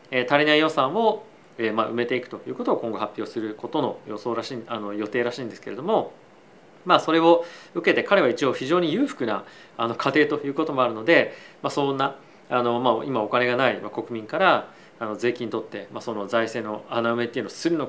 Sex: male